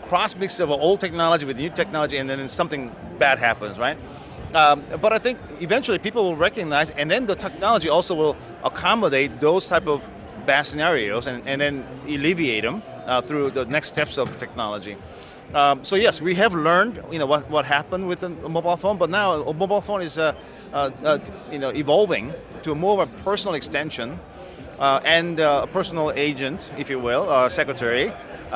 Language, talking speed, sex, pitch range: English, 185 wpm, male, 135-170 Hz